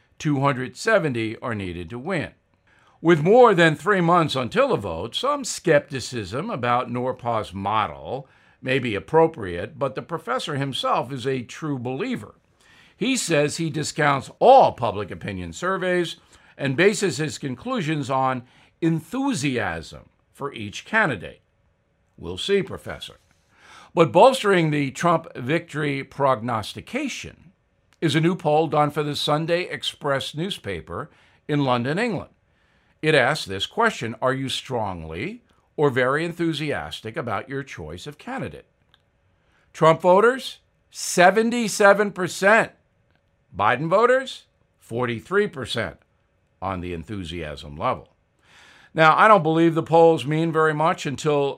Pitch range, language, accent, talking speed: 115-165 Hz, English, American, 120 wpm